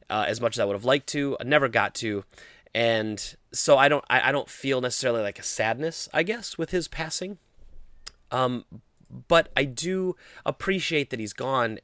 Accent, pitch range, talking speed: American, 105-140 Hz, 195 wpm